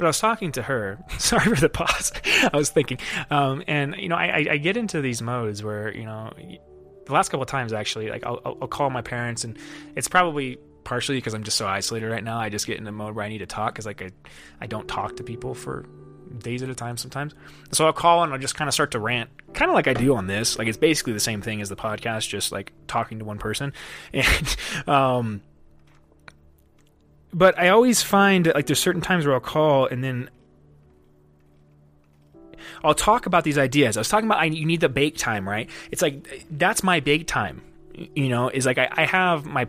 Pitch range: 110-150 Hz